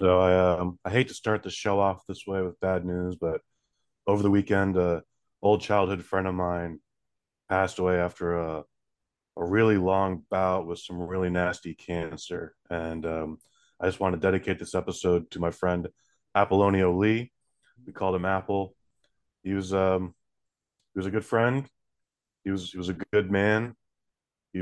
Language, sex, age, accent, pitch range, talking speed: English, male, 20-39, American, 90-105 Hz, 180 wpm